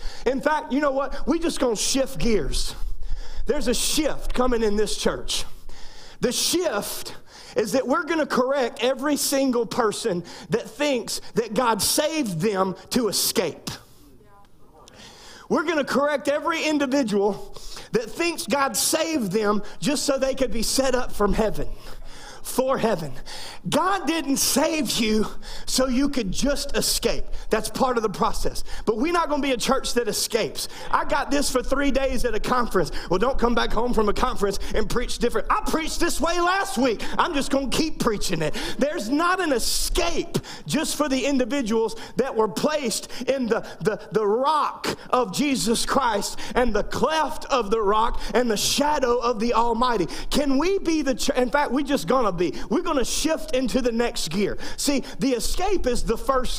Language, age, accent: English, 40-59, American